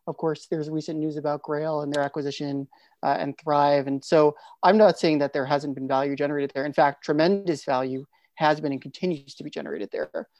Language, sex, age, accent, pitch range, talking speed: English, male, 30-49, American, 140-175 Hz, 215 wpm